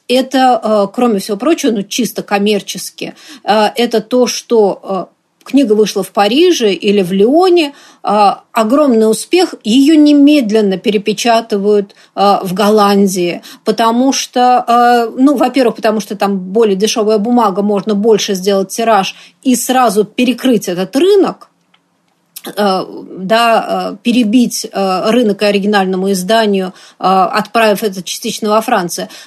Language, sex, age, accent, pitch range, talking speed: Russian, female, 30-49, native, 205-250 Hz, 110 wpm